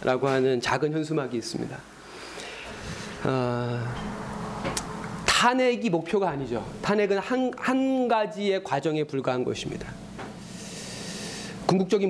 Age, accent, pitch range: 40-59, native, 165-210 Hz